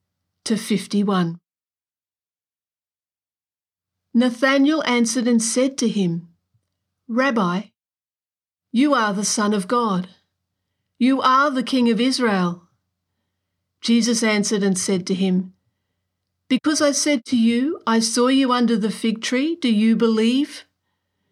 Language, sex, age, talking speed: English, female, 50-69, 120 wpm